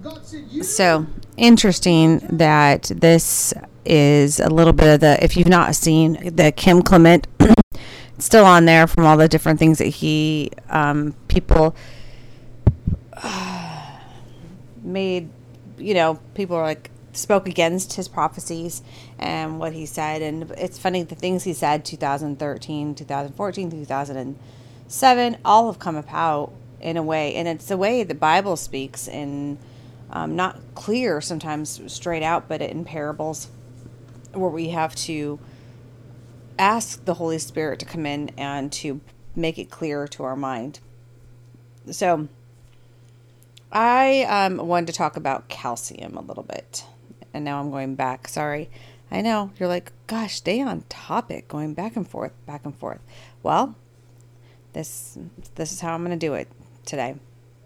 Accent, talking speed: American, 145 wpm